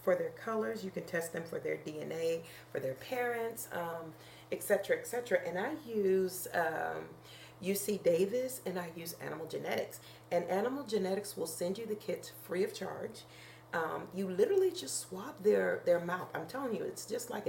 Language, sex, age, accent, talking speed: English, female, 40-59, American, 180 wpm